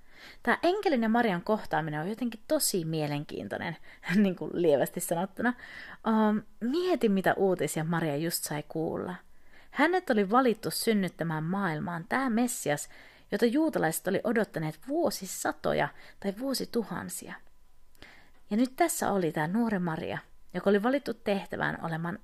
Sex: female